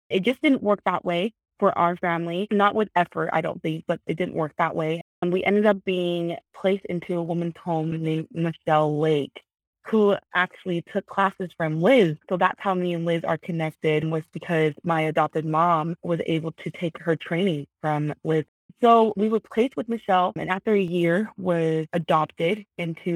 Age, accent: 20-39, American